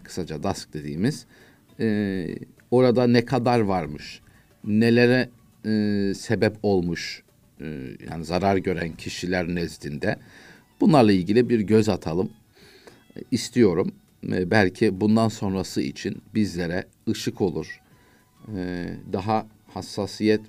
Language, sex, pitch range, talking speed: Turkish, male, 95-115 Hz, 105 wpm